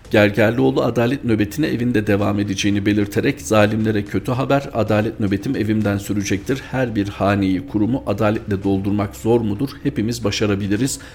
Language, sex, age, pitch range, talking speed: Turkish, male, 50-69, 95-115 Hz, 130 wpm